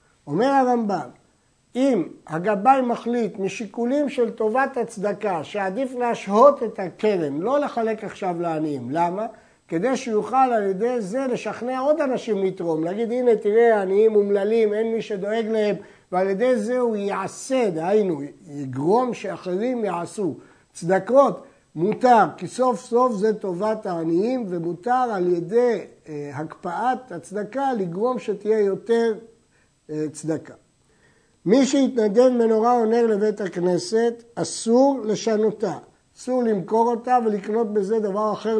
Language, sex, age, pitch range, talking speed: Hebrew, male, 60-79, 180-240 Hz, 120 wpm